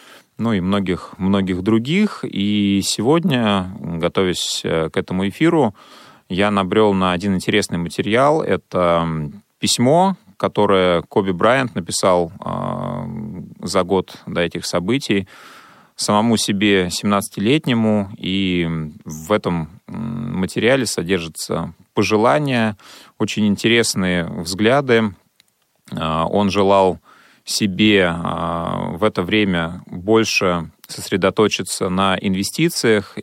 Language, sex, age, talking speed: Russian, male, 30-49, 90 wpm